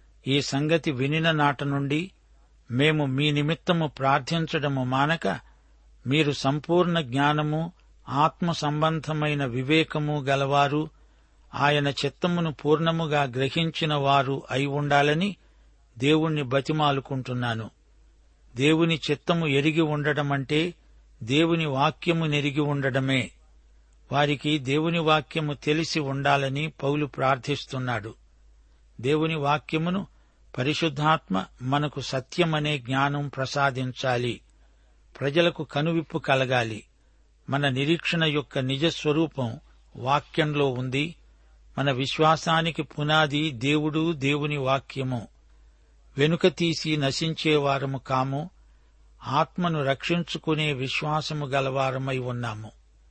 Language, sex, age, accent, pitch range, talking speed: Telugu, male, 60-79, native, 130-155 Hz, 80 wpm